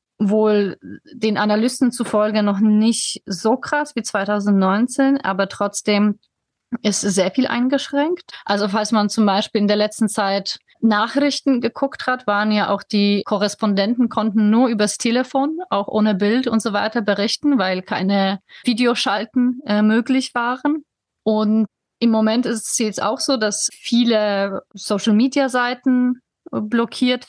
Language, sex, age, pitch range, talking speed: German, female, 30-49, 195-235 Hz, 135 wpm